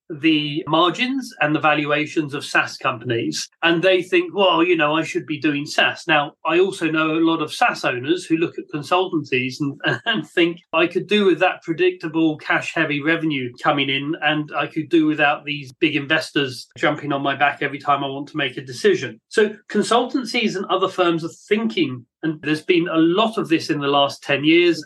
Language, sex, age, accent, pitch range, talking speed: English, male, 30-49, British, 150-205 Hz, 205 wpm